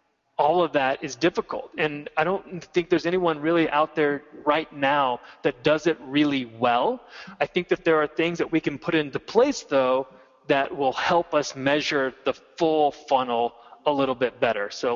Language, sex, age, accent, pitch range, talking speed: English, male, 20-39, American, 130-160 Hz, 190 wpm